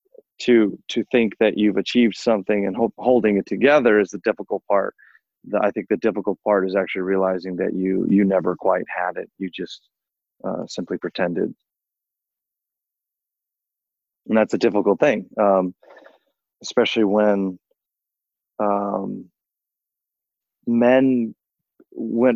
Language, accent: English, American